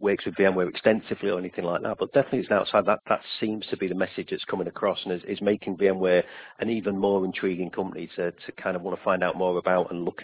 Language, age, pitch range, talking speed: English, 40-59, 90-110 Hz, 260 wpm